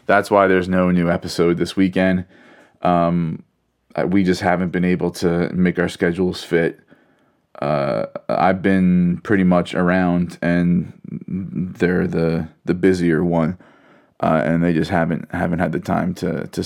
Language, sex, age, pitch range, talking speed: English, male, 20-39, 85-95 Hz, 150 wpm